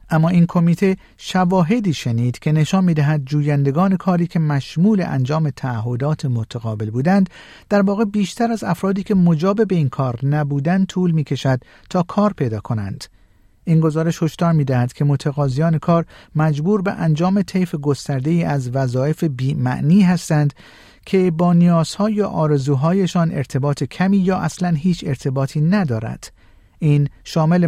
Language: Persian